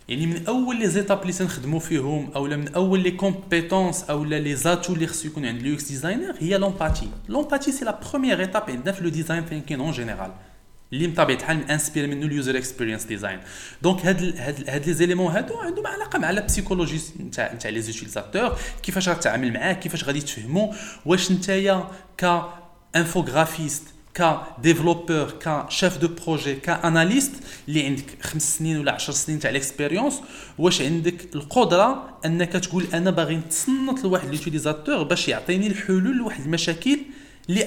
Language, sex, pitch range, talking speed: Arabic, male, 145-185 Hz, 260 wpm